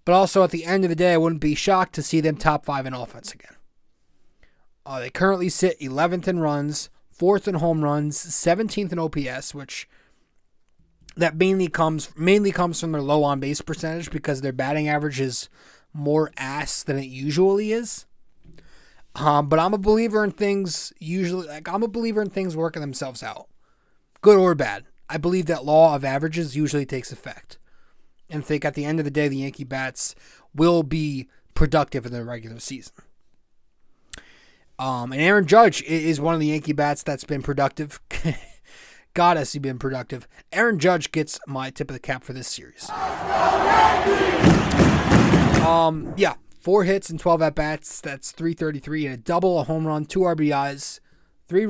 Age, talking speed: 20-39, 175 wpm